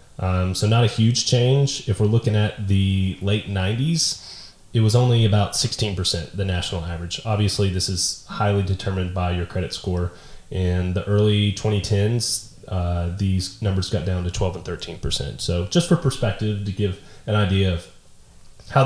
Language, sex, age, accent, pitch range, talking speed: English, male, 30-49, American, 95-110 Hz, 170 wpm